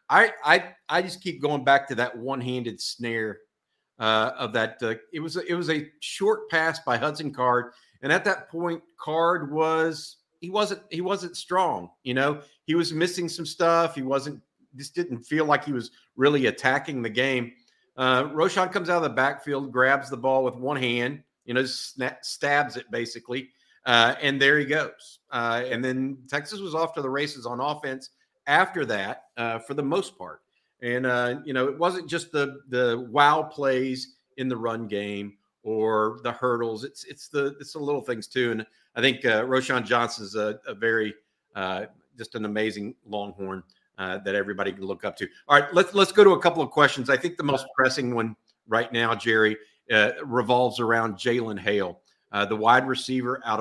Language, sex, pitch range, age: English, male, 115-150 Hz, 50-69